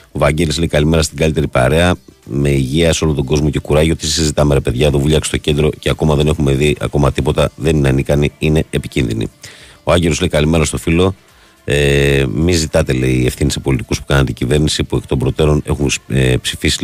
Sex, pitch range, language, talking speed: male, 70-80 Hz, Greek, 205 wpm